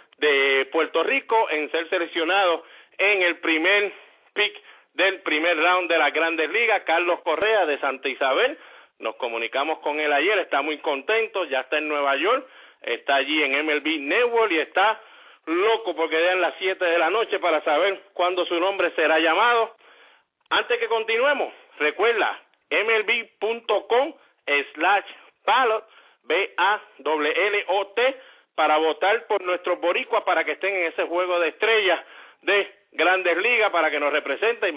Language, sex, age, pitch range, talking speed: English, male, 50-69, 165-225 Hz, 145 wpm